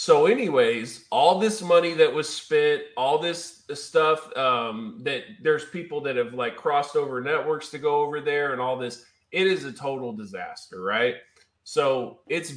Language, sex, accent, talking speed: English, male, American, 170 wpm